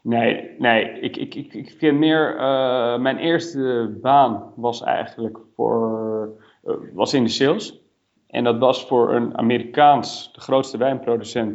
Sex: male